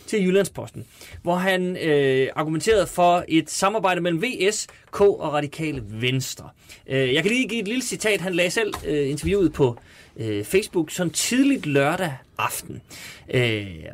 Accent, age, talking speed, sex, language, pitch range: native, 30-49, 150 wpm, male, Danish, 150-225 Hz